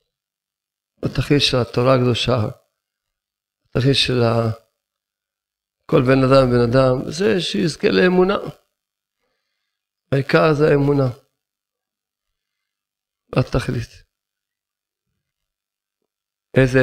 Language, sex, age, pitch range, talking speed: Hebrew, male, 50-69, 110-145 Hz, 70 wpm